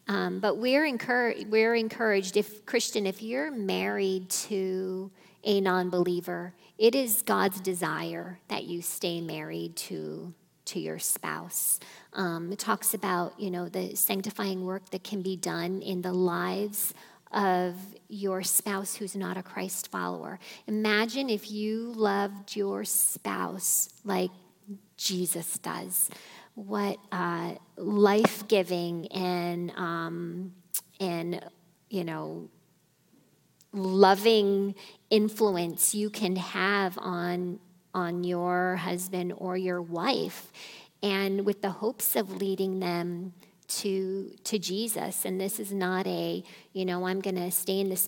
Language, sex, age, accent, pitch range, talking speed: English, female, 40-59, American, 180-205 Hz, 125 wpm